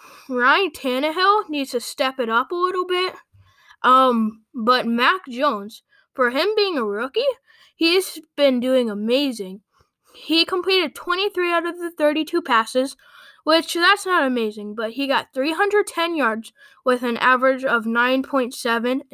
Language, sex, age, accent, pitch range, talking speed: English, female, 10-29, American, 245-310 Hz, 140 wpm